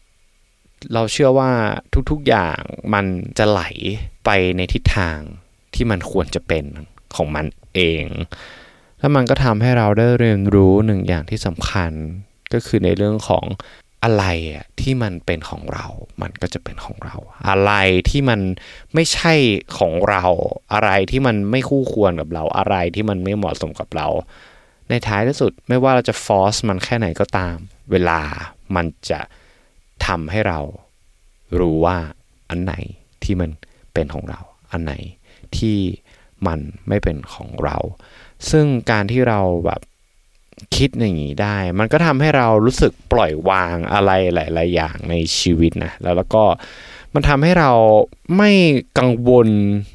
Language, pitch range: Thai, 90-120 Hz